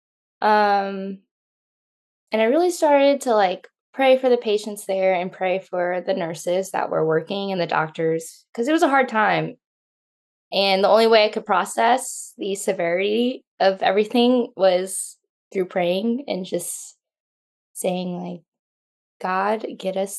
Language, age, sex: English, 10-29, female